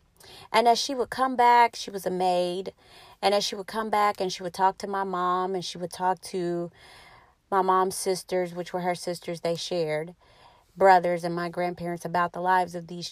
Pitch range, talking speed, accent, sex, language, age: 175-195 Hz, 210 wpm, American, female, English, 30-49